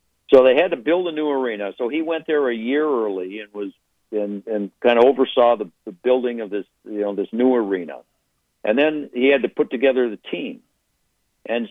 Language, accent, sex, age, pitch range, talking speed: English, American, male, 60-79, 105-130 Hz, 215 wpm